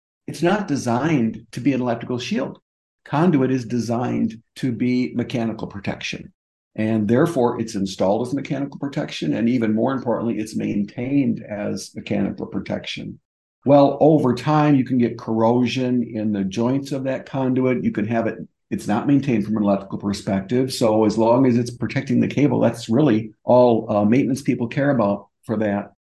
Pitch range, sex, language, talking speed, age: 105-130 Hz, male, English, 170 wpm, 50-69